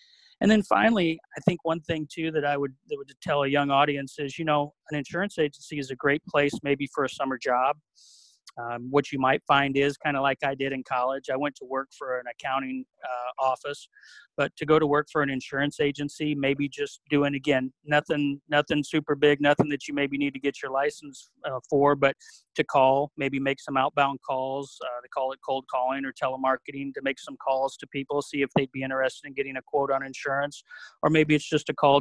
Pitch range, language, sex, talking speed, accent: 135-150 Hz, English, male, 225 wpm, American